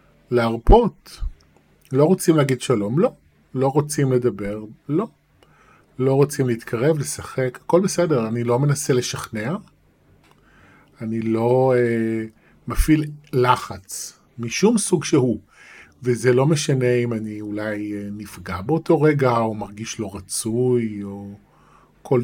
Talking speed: 115 wpm